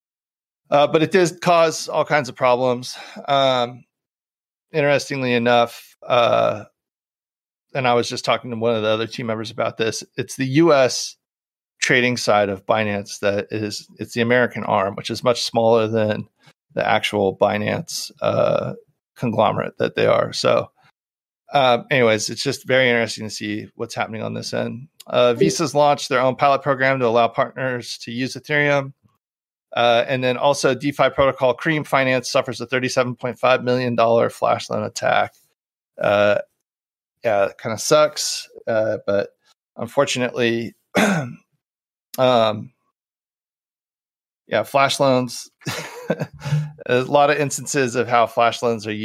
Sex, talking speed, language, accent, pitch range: male, 140 wpm, English, American, 110-135 Hz